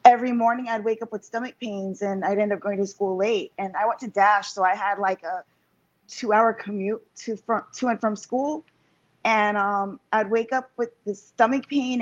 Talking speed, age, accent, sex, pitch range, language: 215 wpm, 20-39, American, female, 210-240 Hz, English